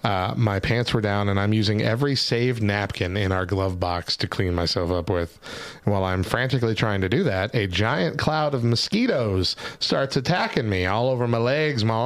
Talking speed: 200 wpm